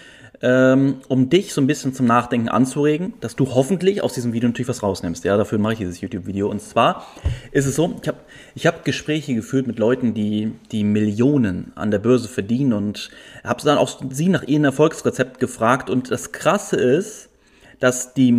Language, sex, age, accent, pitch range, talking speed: German, male, 30-49, German, 110-135 Hz, 190 wpm